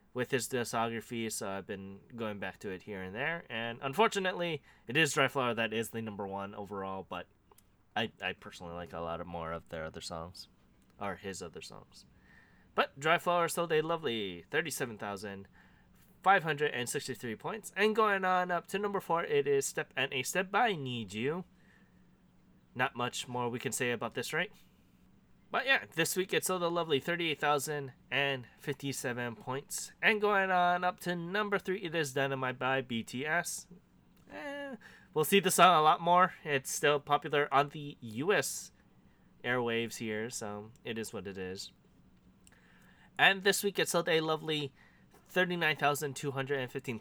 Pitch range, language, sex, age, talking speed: 115-170 Hz, English, male, 20-39, 160 wpm